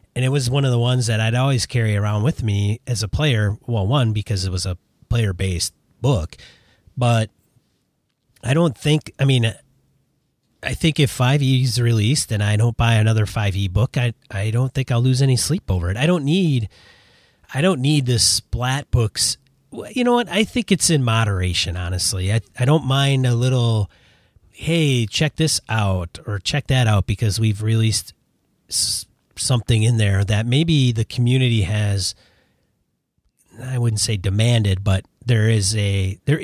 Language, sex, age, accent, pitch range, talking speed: English, male, 30-49, American, 105-135 Hz, 180 wpm